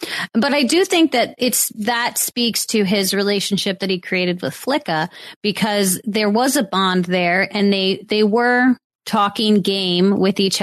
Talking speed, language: 170 wpm, English